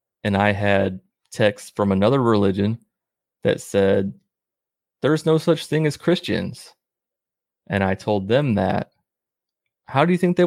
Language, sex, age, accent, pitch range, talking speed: English, male, 30-49, American, 95-125 Hz, 145 wpm